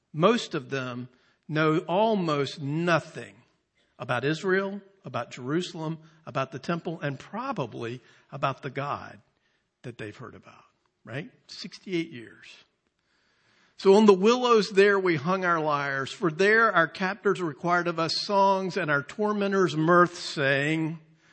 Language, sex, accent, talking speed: English, male, American, 130 wpm